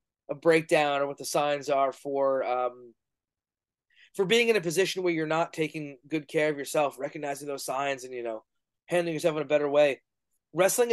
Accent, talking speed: American, 190 wpm